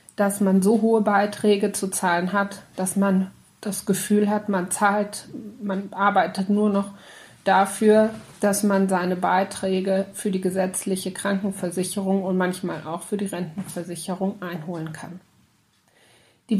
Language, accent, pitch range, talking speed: German, German, 190-215 Hz, 135 wpm